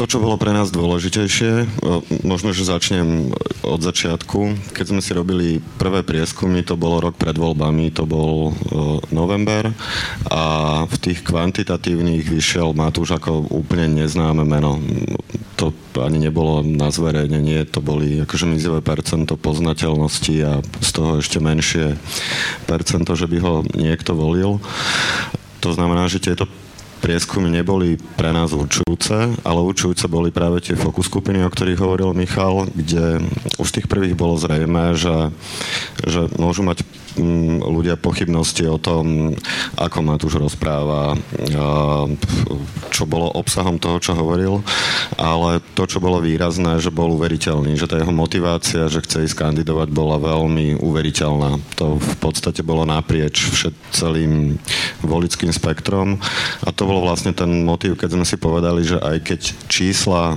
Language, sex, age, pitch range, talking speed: Slovak, male, 40-59, 80-90 Hz, 140 wpm